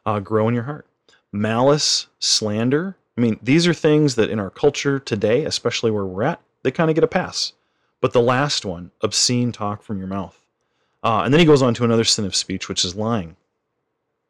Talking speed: 210 wpm